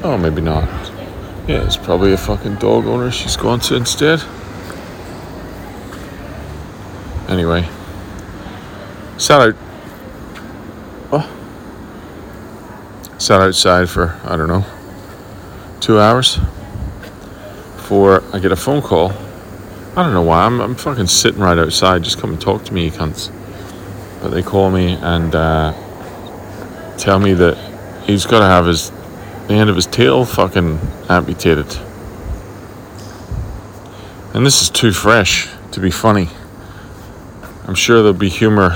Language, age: English, 40-59